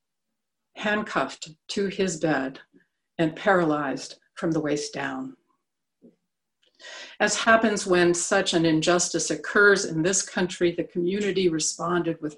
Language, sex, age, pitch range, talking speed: English, female, 60-79, 160-190 Hz, 115 wpm